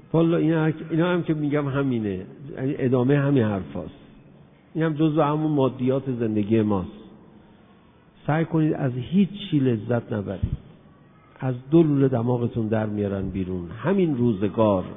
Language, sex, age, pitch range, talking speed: Persian, male, 50-69, 105-145 Hz, 130 wpm